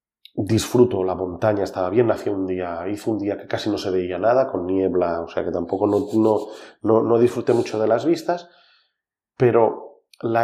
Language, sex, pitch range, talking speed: French, male, 95-115 Hz, 190 wpm